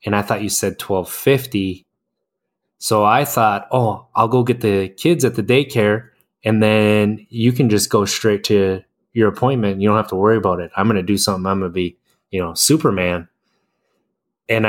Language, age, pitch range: English, 20-39, 95-105 Hz